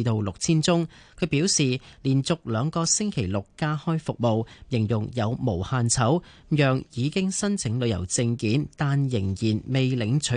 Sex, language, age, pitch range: male, Chinese, 30-49, 110-150 Hz